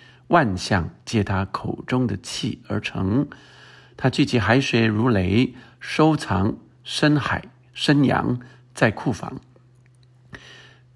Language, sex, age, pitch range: Chinese, male, 50-69, 110-130 Hz